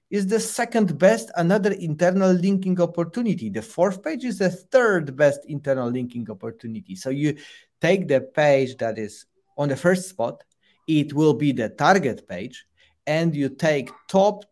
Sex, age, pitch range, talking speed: male, 30-49, 130-175 Hz, 160 wpm